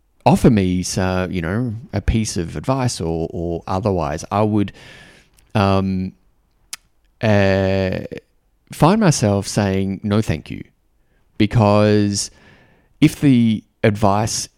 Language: English